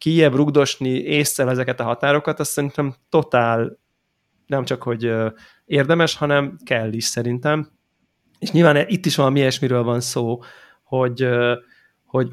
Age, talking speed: 20-39, 135 wpm